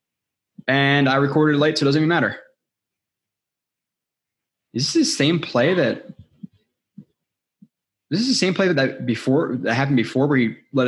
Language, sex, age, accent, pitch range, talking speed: English, male, 20-39, American, 125-155 Hz, 165 wpm